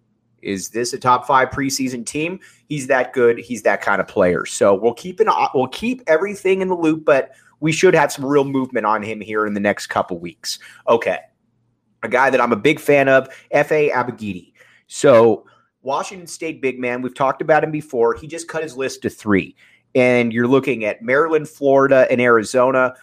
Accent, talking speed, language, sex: American, 200 wpm, English, male